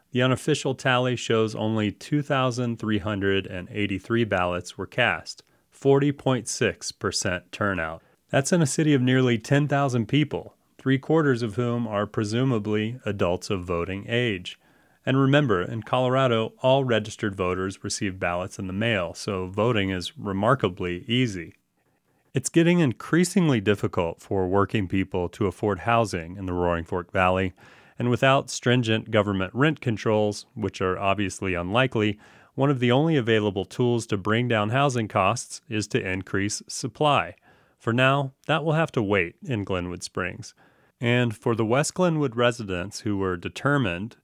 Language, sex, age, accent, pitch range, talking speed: English, male, 30-49, American, 100-130 Hz, 140 wpm